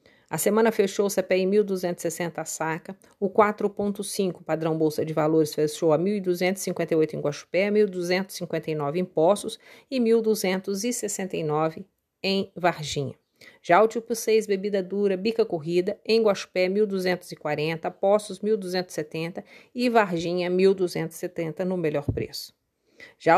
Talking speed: 120 wpm